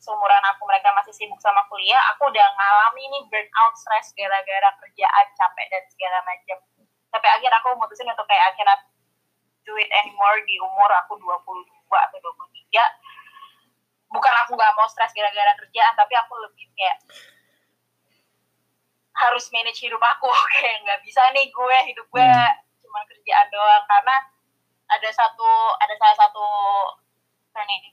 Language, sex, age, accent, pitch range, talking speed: Indonesian, female, 20-39, native, 200-285 Hz, 145 wpm